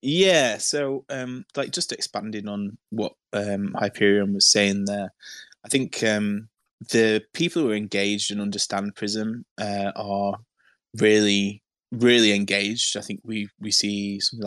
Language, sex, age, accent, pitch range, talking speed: English, male, 20-39, British, 100-110 Hz, 145 wpm